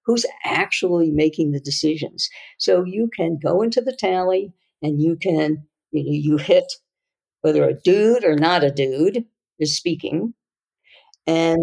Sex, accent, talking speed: female, American, 150 wpm